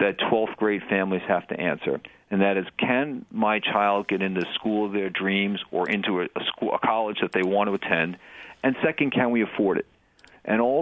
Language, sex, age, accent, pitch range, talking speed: English, male, 50-69, American, 95-115 Hz, 205 wpm